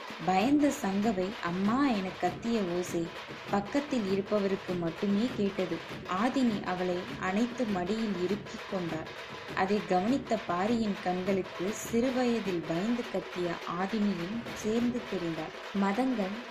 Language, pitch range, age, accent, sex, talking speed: Tamil, 180-230 Hz, 20-39, native, female, 95 wpm